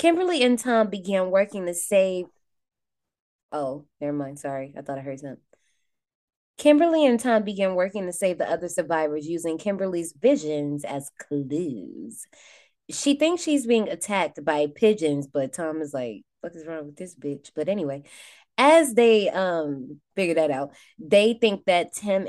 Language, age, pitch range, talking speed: English, 20-39, 155-215 Hz, 160 wpm